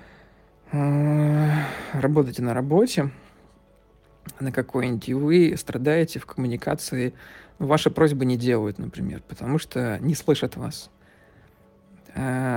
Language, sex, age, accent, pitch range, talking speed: Russian, male, 40-59, native, 130-160 Hz, 100 wpm